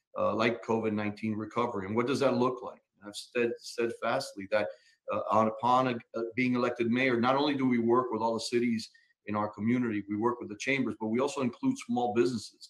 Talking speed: 215 wpm